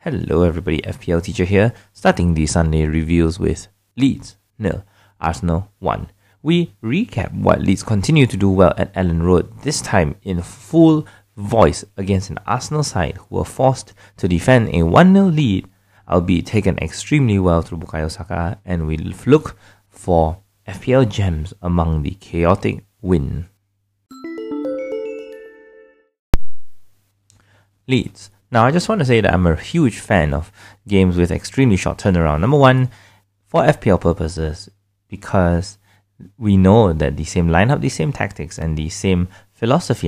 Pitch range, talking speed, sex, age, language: 85-110 Hz, 150 wpm, male, 20-39, English